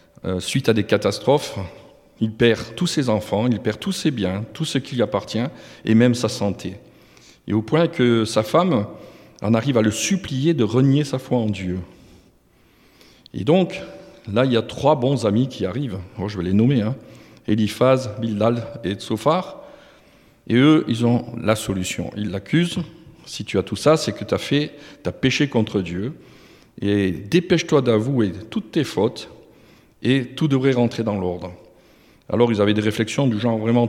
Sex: male